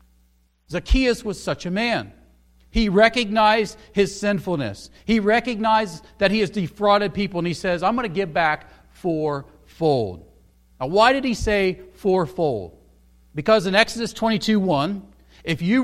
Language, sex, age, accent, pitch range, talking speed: English, male, 40-59, American, 155-220 Hz, 145 wpm